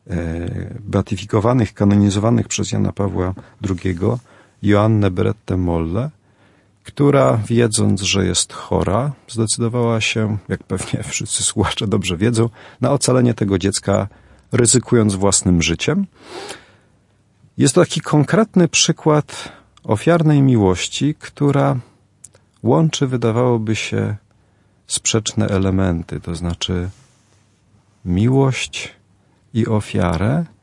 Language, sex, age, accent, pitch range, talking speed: Polish, male, 40-59, native, 100-120 Hz, 95 wpm